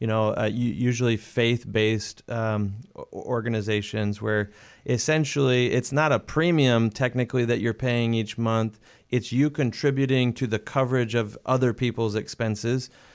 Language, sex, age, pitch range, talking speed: English, male, 30-49, 110-130 Hz, 130 wpm